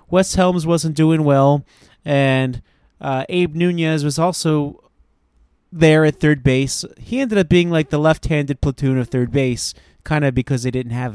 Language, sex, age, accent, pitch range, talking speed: English, male, 30-49, American, 125-165 Hz, 170 wpm